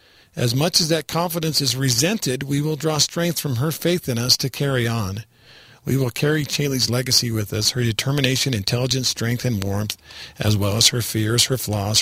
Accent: American